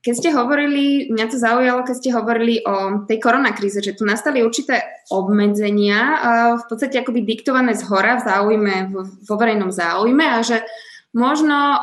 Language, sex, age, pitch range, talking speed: Slovak, female, 20-39, 200-250 Hz, 155 wpm